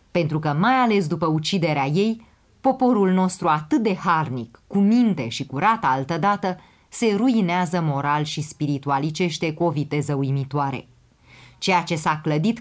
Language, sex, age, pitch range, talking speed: Romanian, female, 30-49, 150-185 Hz, 145 wpm